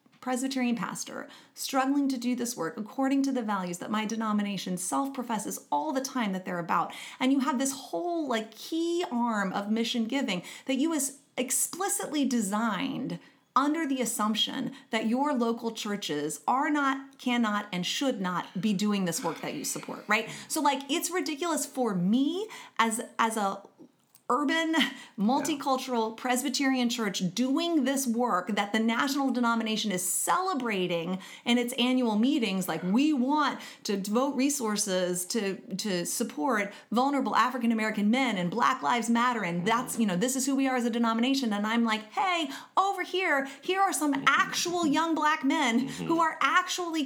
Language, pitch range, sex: English, 220-285 Hz, female